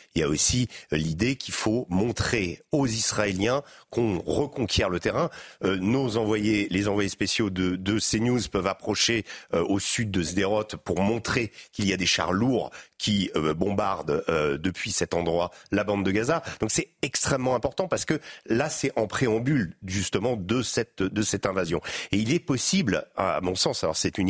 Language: French